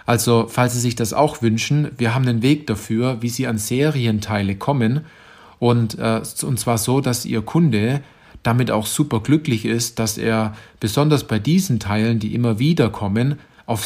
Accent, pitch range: German, 110-135 Hz